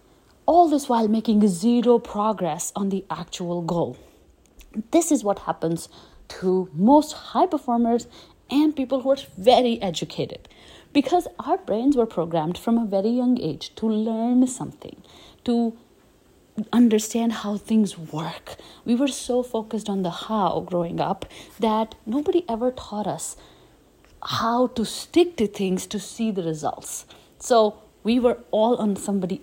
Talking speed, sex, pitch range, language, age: 145 wpm, female, 195-265 Hz, English, 30-49